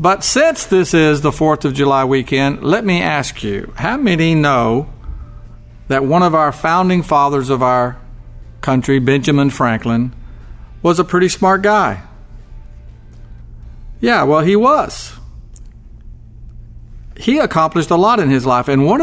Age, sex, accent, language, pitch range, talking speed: 50-69, male, American, English, 115-160 Hz, 140 wpm